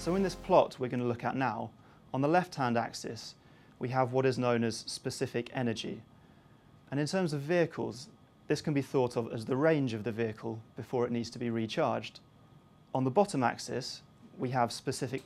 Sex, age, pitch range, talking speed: male, 30-49, 115-135 Hz, 200 wpm